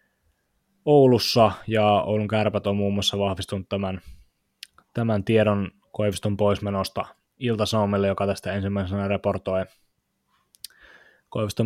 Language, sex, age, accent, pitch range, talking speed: Finnish, male, 20-39, native, 100-110 Hz, 100 wpm